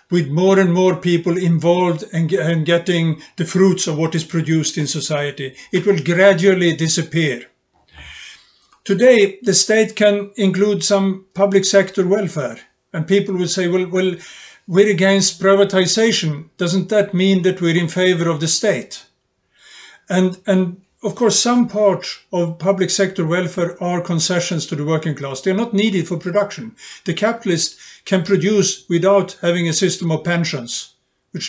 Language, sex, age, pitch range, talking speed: English, male, 50-69, 165-195 Hz, 155 wpm